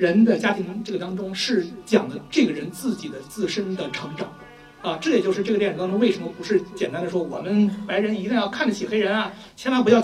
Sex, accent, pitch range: male, native, 180-235 Hz